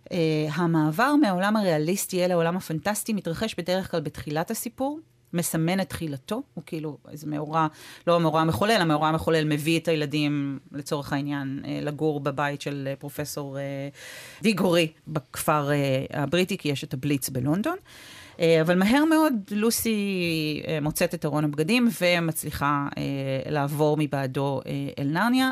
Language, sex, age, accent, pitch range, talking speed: Hebrew, female, 40-59, native, 150-190 Hz, 140 wpm